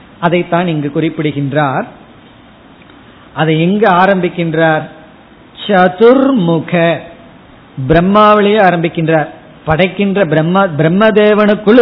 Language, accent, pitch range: Tamil, native, 160-200 Hz